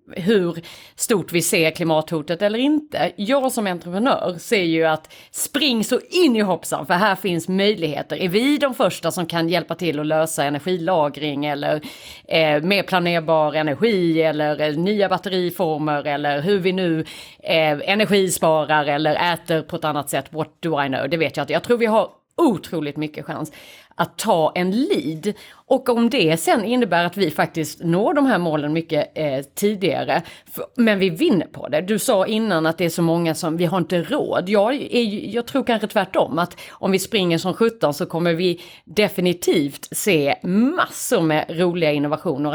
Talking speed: 180 wpm